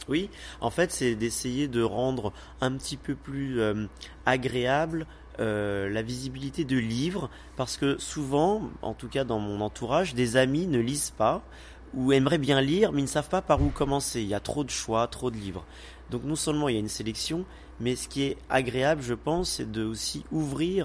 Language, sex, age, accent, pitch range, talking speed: Italian, male, 30-49, French, 100-140 Hz, 200 wpm